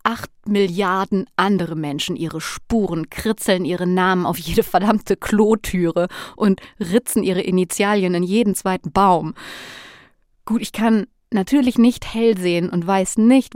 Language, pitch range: German, 175-220 Hz